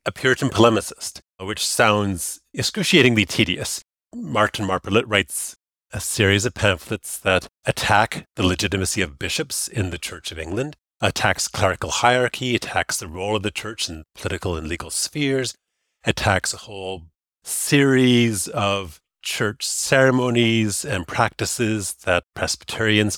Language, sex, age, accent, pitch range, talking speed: English, male, 40-59, American, 95-130 Hz, 130 wpm